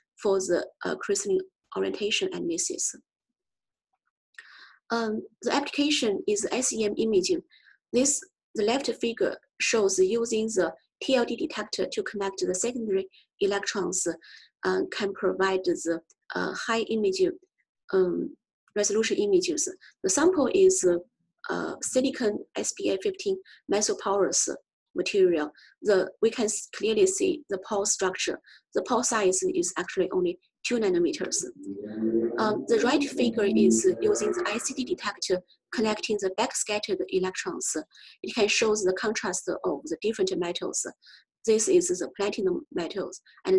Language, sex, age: English, female, 30-49